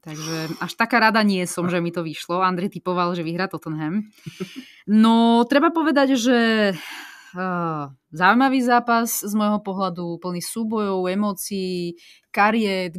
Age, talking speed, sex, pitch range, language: 20-39, 130 wpm, female, 175-220 Hz, Slovak